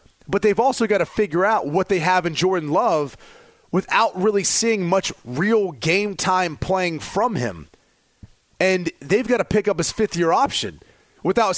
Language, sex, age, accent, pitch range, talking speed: English, male, 30-49, American, 155-195 Hz, 175 wpm